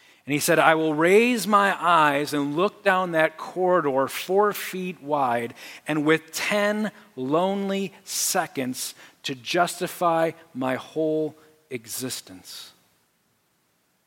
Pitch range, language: 155-205 Hz, English